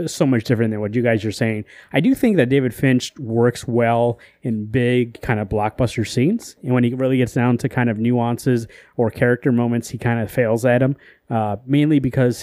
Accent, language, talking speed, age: American, English, 215 wpm, 30-49